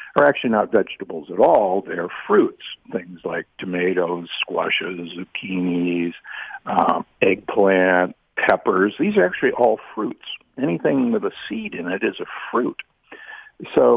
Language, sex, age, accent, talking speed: English, male, 50-69, American, 140 wpm